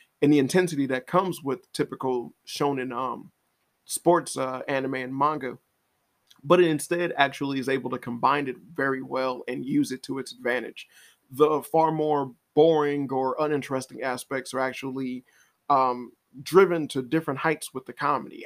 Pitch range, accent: 130-165 Hz, American